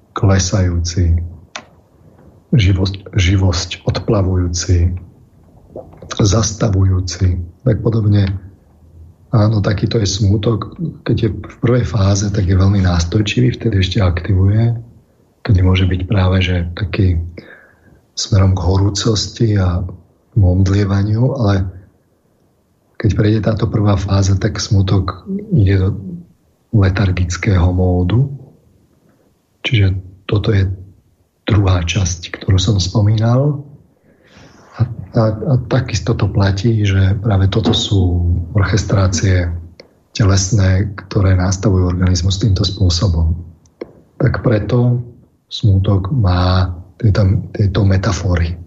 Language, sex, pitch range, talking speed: Slovak, male, 95-110 Hz, 95 wpm